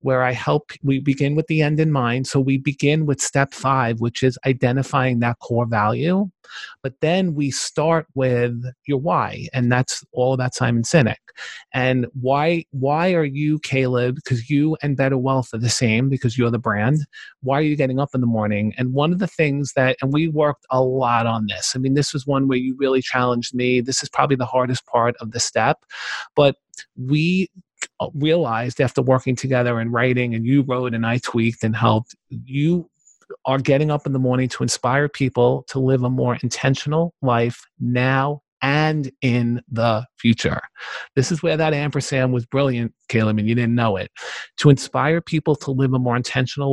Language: English